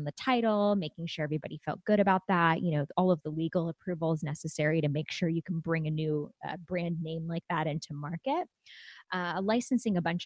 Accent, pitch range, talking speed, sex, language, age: American, 165-210 Hz, 210 wpm, female, English, 20-39